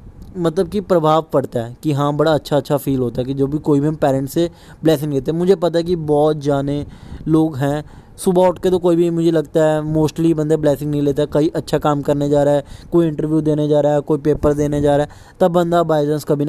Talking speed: 255 wpm